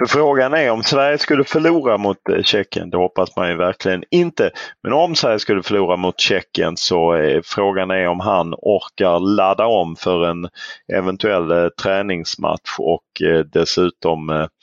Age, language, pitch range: 30-49, English, 95-135 Hz